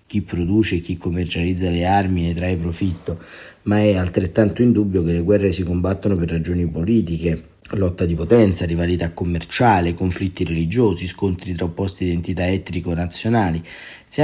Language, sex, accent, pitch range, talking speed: Italian, male, native, 90-105 Hz, 145 wpm